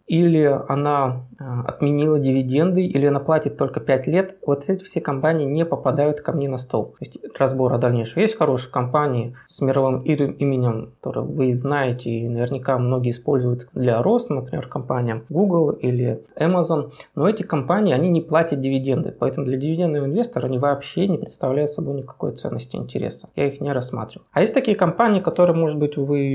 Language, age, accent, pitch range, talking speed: Russian, 20-39, native, 130-170 Hz, 165 wpm